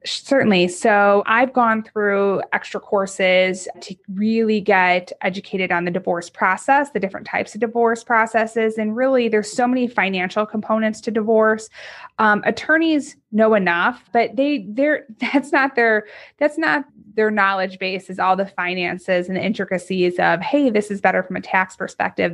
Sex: female